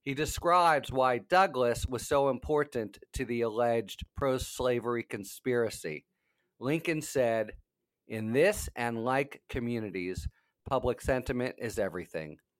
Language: English